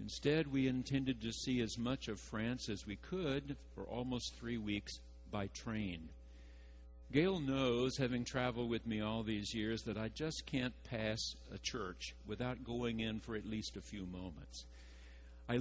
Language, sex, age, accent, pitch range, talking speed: English, male, 60-79, American, 85-135 Hz, 170 wpm